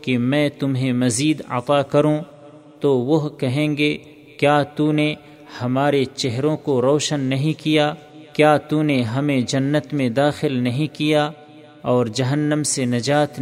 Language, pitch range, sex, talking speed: Urdu, 130-150 Hz, male, 145 wpm